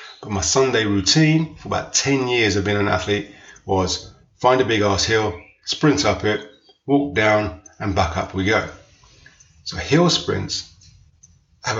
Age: 30-49